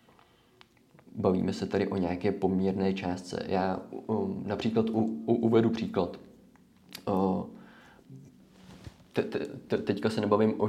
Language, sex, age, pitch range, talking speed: Czech, male, 20-39, 95-110 Hz, 130 wpm